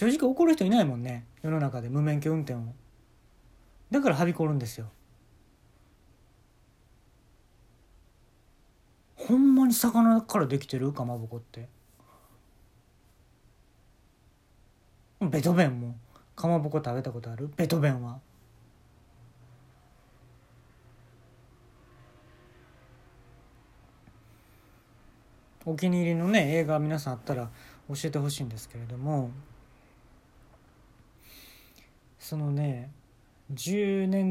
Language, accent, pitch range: Japanese, native, 115-160 Hz